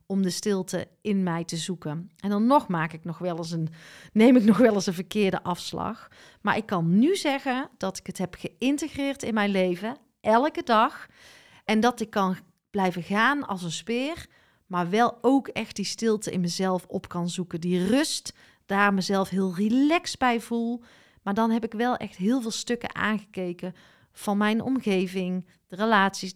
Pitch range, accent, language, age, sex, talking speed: 185-230 Hz, Dutch, Dutch, 40-59, female, 185 wpm